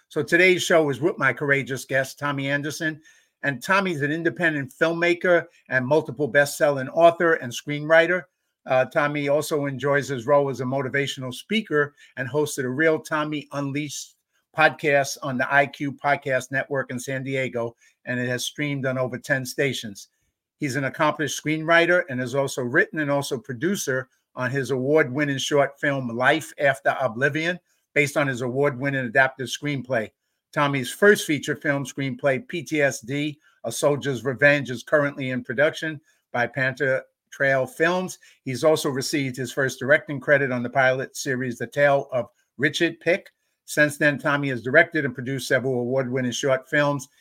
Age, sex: 50-69, male